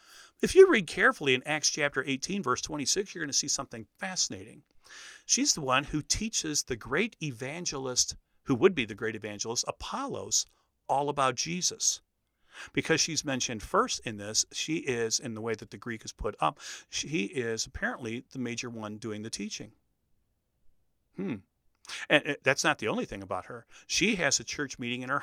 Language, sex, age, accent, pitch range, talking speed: English, male, 40-59, American, 120-185 Hz, 180 wpm